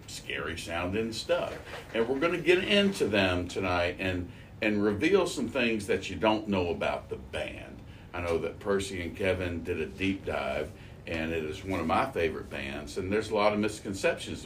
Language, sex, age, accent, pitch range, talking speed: English, male, 50-69, American, 80-100 Hz, 195 wpm